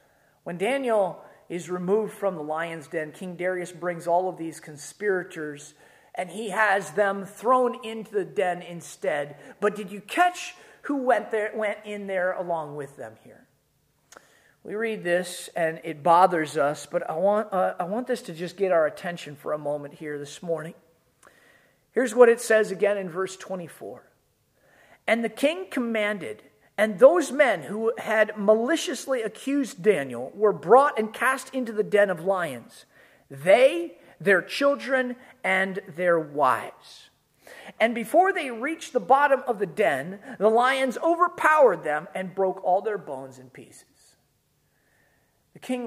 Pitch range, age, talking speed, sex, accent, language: 180-245 Hz, 40-59, 155 wpm, male, American, English